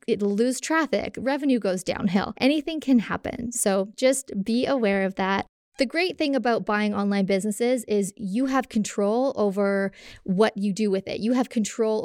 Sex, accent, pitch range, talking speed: female, American, 200-255 Hz, 175 wpm